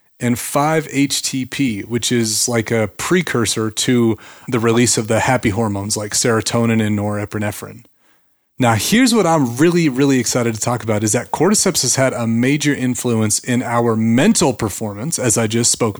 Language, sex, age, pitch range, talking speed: English, male, 30-49, 115-160 Hz, 165 wpm